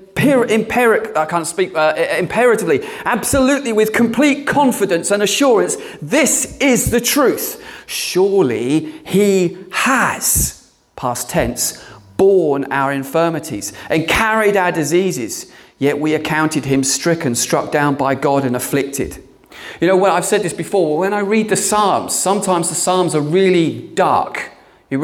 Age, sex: 40-59, male